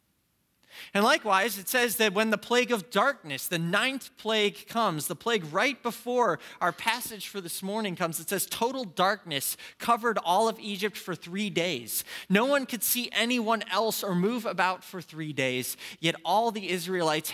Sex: male